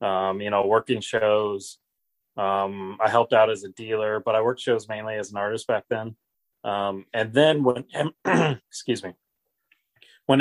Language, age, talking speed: English, 30-49, 165 wpm